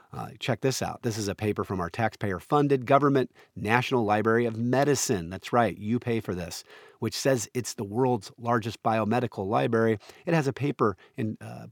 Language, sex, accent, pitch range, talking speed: English, male, American, 95-120 Hz, 180 wpm